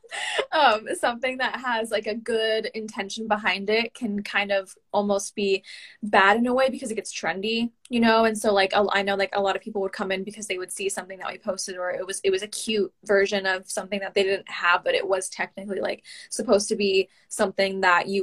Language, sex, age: English, female, 10-29